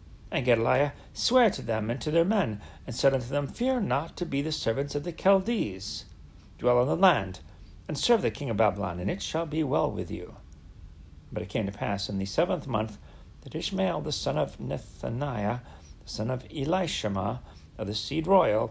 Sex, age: male, 60-79